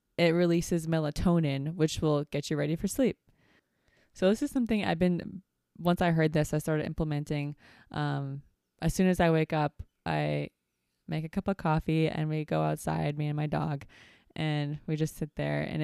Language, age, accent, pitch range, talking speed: English, 20-39, American, 150-180 Hz, 190 wpm